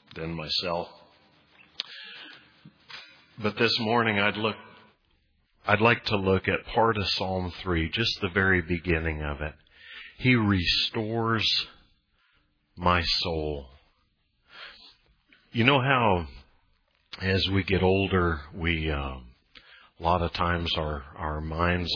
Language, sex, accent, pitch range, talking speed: English, male, American, 80-90 Hz, 115 wpm